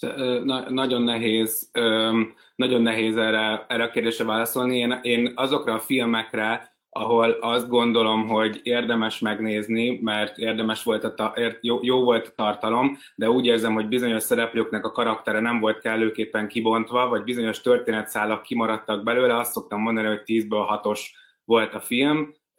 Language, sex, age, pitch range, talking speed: Hungarian, male, 20-39, 110-120 Hz, 150 wpm